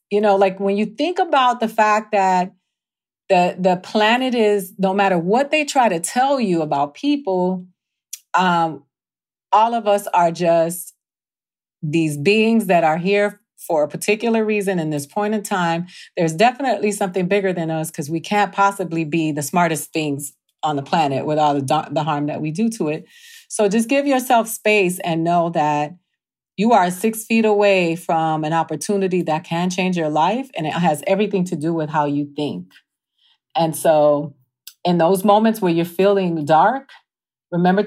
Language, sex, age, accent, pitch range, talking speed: English, female, 40-59, American, 160-205 Hz, 175 wpm